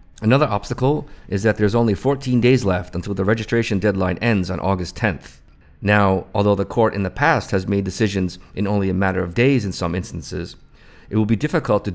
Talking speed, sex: 205 wpm, male